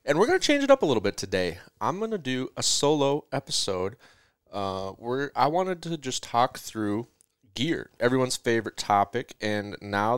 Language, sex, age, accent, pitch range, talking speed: English, male, 20-39, American, 100-130 Hz, 190 wpm